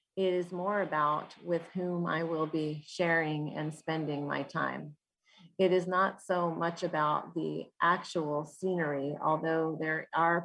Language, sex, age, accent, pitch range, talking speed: English, female, 30-49, American, 155-180 Hz, 150 wpm